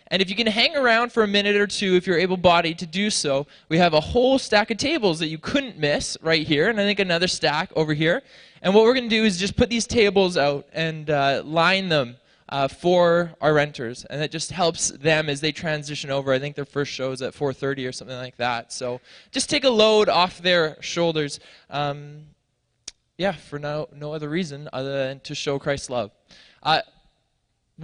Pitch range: 145-195 Hz